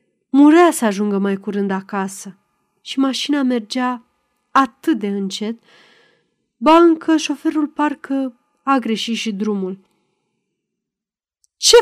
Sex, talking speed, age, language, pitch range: female, 105 wpm, 30-49, Romanian, 205-275 Hz